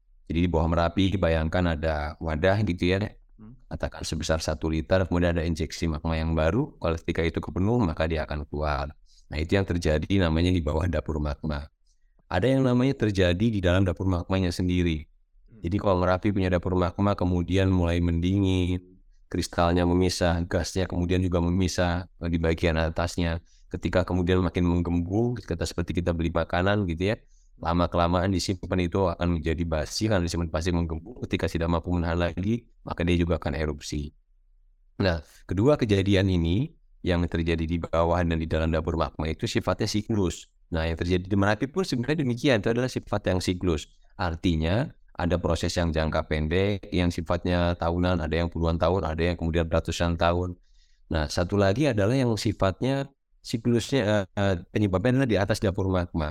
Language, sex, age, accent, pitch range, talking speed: Indonesian, male, 20-39, native, 80-95 Hz, 165 wpm